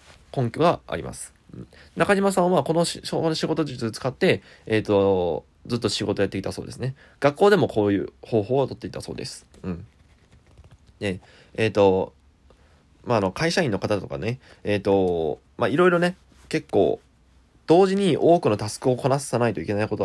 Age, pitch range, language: 20-39, 95-135 Hz, Japanese